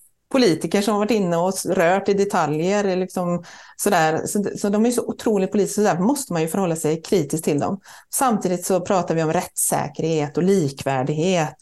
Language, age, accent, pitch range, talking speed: Swedish, 30-49, native, 165-220 Hz, 185 wpm